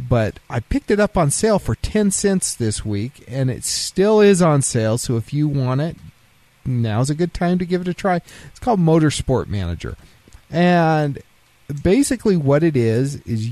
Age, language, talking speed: 40-59, English, 185 wpm